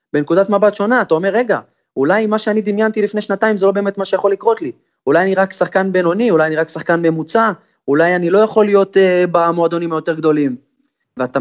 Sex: male